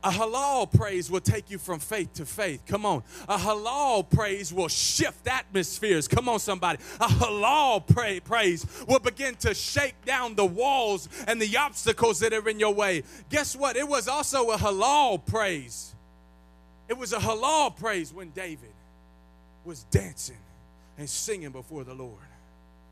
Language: English